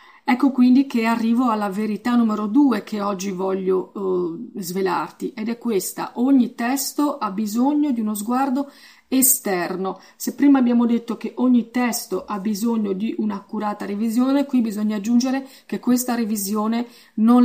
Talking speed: 145 wpm